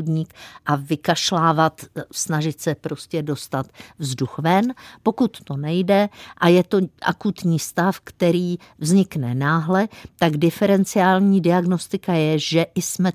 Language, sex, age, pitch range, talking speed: Czech, female, 50-69, 155-195 Hz, 115 wpm